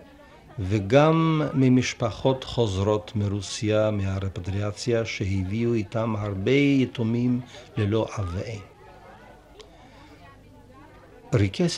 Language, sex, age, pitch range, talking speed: Hebrew, male, 50-69, 100-125 Hz, 60 wpm